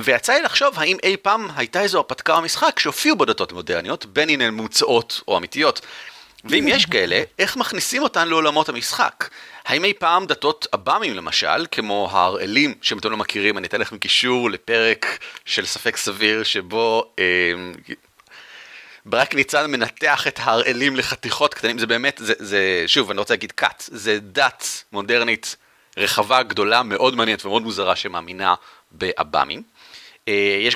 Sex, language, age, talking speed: male, Hebrew, 30-49, 150 wpm